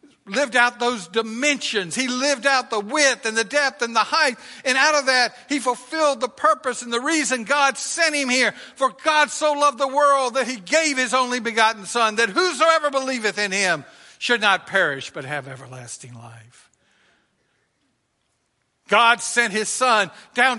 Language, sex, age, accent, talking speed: English, male, 60-79, American, 175 wpm